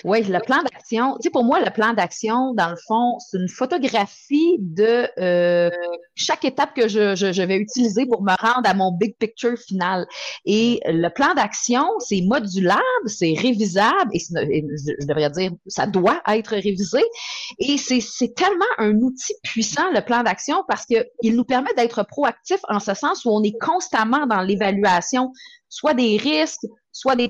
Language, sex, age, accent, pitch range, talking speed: French, female, 30-49, Canadian, 195-265 Hz, 180 wpm